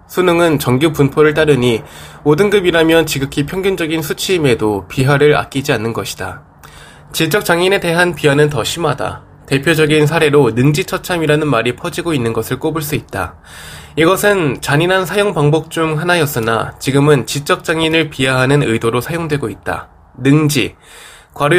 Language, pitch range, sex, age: Korean, 120-160 Hz, male, 20-39